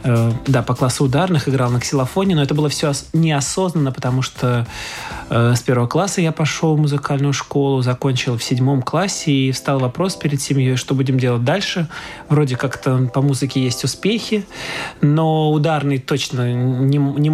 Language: Russian